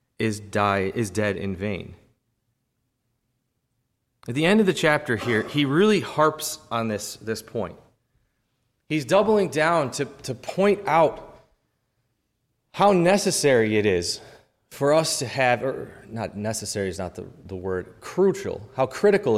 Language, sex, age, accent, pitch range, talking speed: English, male, 30-49, American, 115-155 Hz, 140 wpm